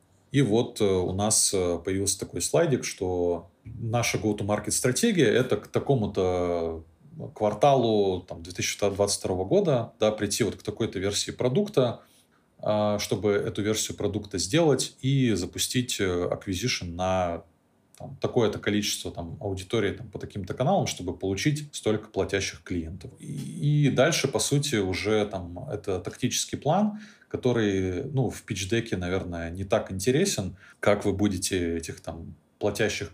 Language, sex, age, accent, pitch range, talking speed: Russian, male, 20-39, native, 90-115 Hz, 120 wpm